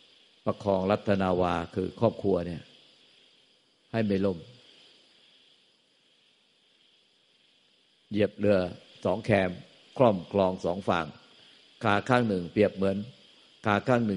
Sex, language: male, Thai